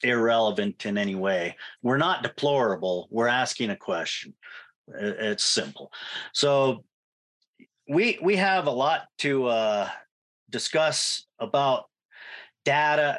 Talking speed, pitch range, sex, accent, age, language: 110 wpm, 110-145 Hz, male, American, 40-59, English